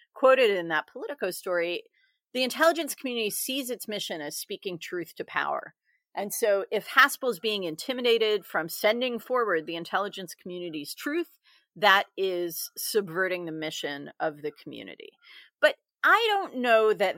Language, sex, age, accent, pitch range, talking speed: English, female, 40-59, American, 195-270 Hz, 145 wpm